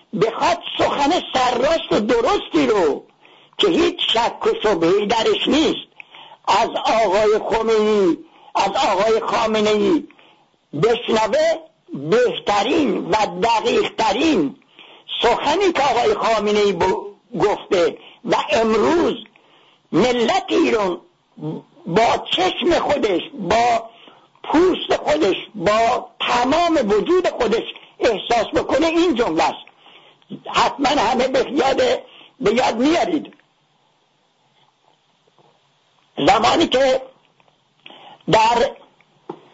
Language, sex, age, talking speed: English, male, 60-79, 85 wpm